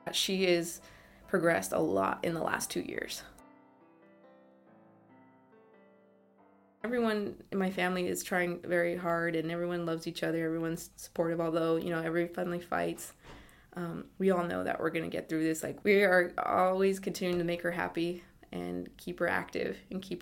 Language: English